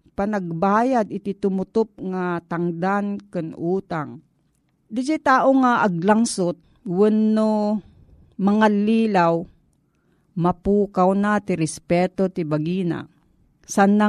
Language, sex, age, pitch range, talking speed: Filipino, female, 40-59, 175-230 Hz, 95 wpm